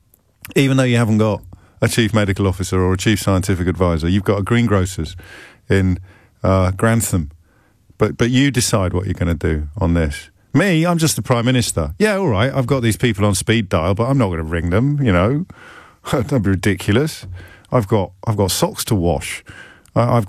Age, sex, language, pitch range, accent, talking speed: 50-69, male, English, 100-140 Hz, British, 205 wpm